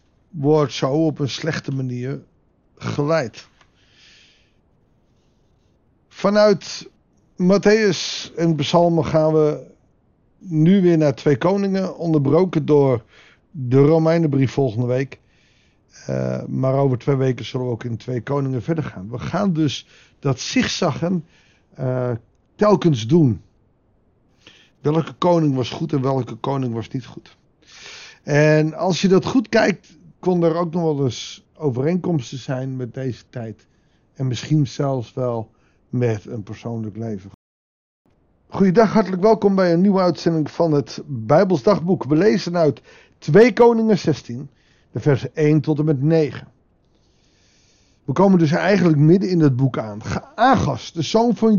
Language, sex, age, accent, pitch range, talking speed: Dutch, male, 50-69, Dutch, 125-170 Hz, 135 wpm